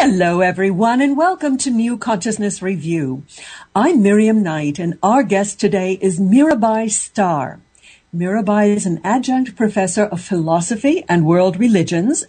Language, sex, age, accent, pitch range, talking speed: English, female, 60-79, American, 175-225 Hz, 135 wpm